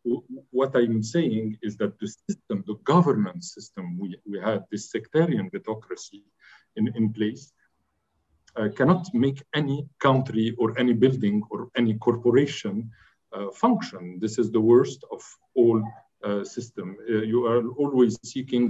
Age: 50-69